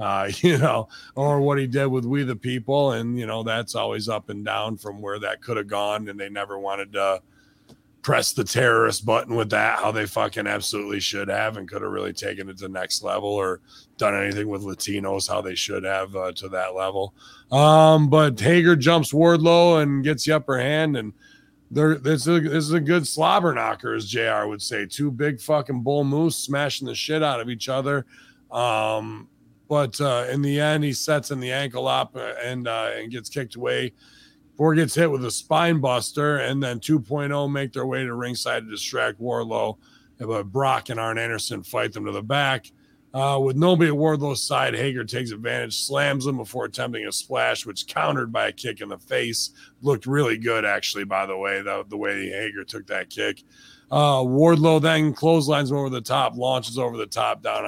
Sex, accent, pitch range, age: male, American, 105-145 Hz, 30-49